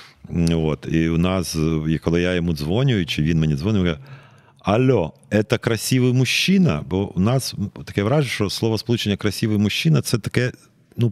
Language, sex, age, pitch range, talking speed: Ukrainian, male, 40-59, 95-135 Hz, 165 wpm